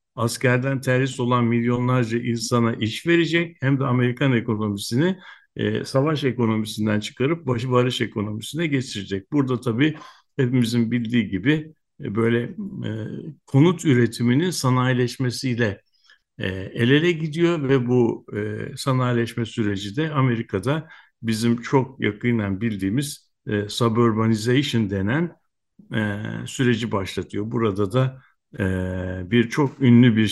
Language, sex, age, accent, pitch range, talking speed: Turkish, male, 60-79, native, 110-135 Hz, 115 wpm